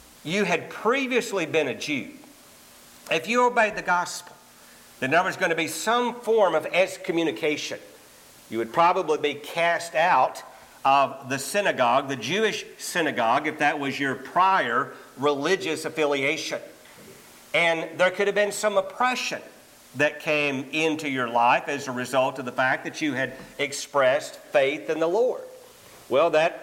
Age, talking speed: 50-69, 155 wpm